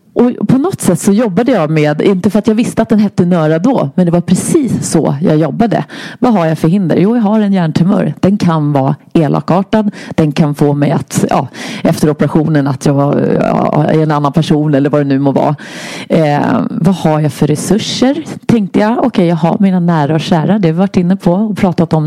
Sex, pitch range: female, 155-200 Hz